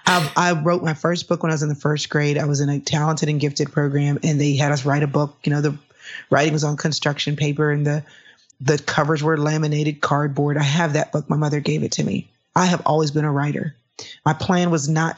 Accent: American